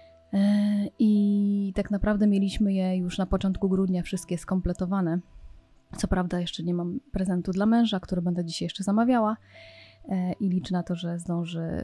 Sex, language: female, Polish